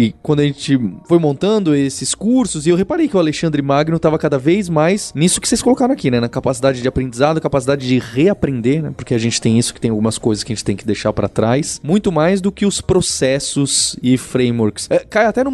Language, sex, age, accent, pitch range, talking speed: Portuguese, male, 20-39, Brazilian, 130-185 Hz, 240 wpm